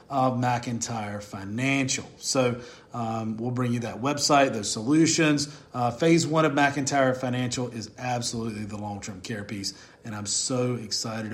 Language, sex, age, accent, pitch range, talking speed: English, male, 40-59, American, 120-140 Hz, 150 wpm